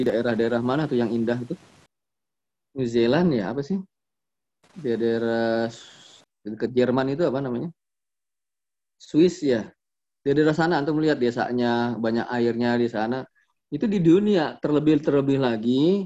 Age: 20-39